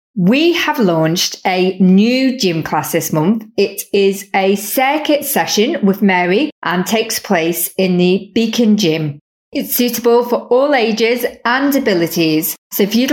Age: 30-49